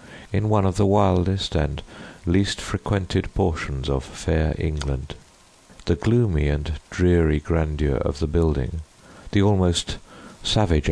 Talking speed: 125 wpm